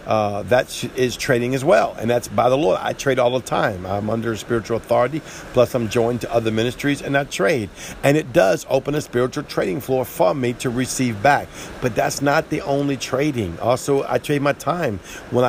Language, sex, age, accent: English, male, 50-69, American